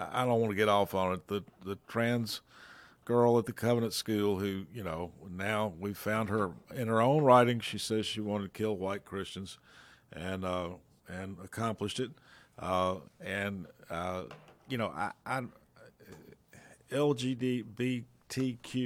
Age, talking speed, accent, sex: 50-69, 155 wpm, American, male